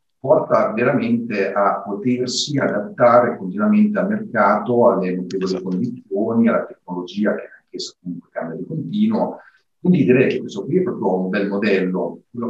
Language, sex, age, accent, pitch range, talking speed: Italian, male, 50-69, native, 95-120 Hz, 140 wpm